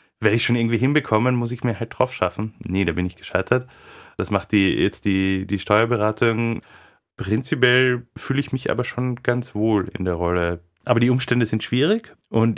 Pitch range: 100-120 Hz